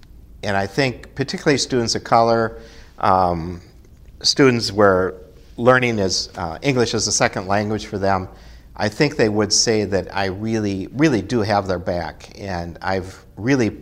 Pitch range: 90-115 Hz